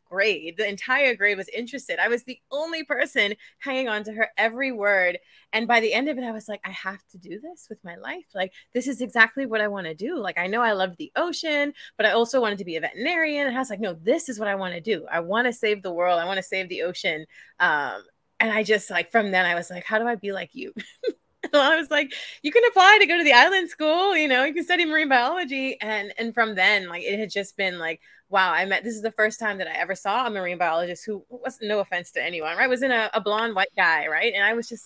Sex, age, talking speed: female, 20-39, 275 wpm